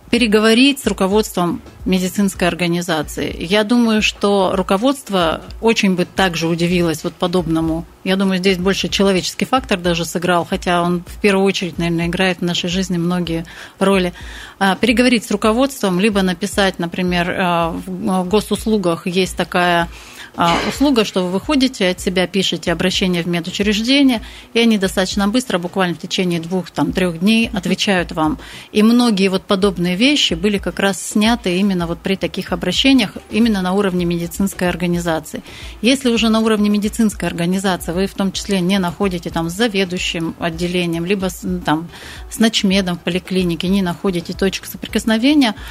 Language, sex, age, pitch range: Russian, female, 30-49, 175-205 Hz